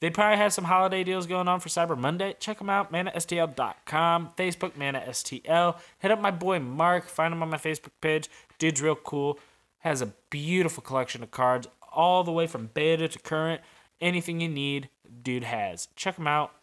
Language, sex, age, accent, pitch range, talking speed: English, male, 20-39, American, 130-170 Hz, 190 wpm